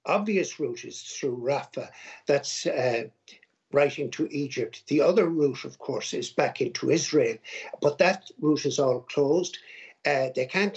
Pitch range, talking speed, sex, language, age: 145-205 Hz, 155 wpm, male, English, 60-79